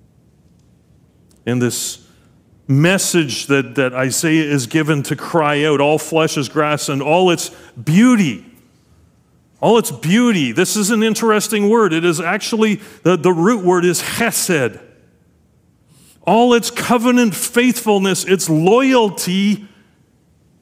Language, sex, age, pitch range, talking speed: English, male, 40-59, 145-195 Hz, 120 wpm